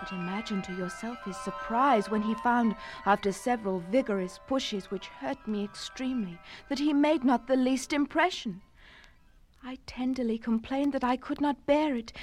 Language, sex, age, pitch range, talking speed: English, female, 60-79, 195-255 Hz, 160 wpm